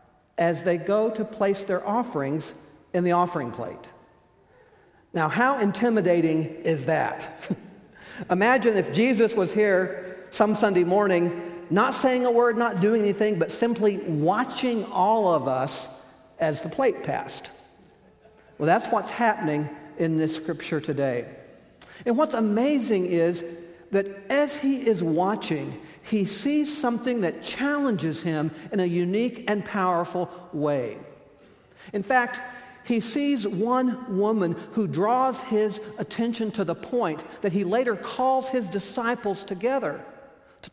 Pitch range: 170-235 Hz